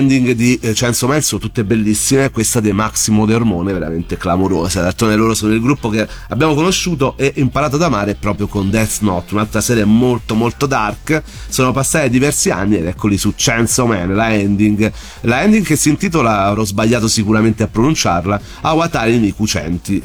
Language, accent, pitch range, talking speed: Italian, native, 105-145 Hz, 175 wpm